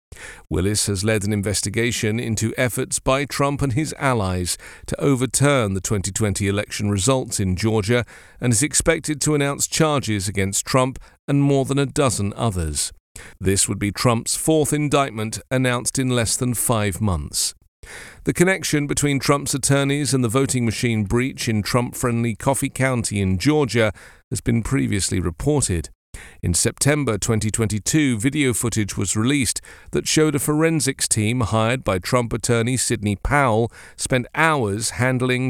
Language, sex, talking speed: English, male, 145 wpm